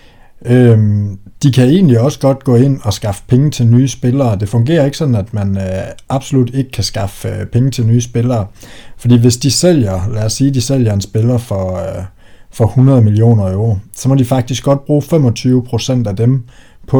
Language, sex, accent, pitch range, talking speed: Danish, male, native, 100-125 Hz, 200 wpm